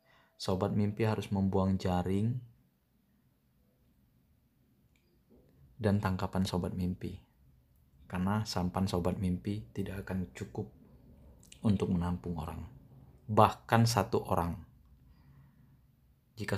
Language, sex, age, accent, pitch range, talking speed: Indonesian, male, 20-39, native, 95-110 Hz, 85 wpm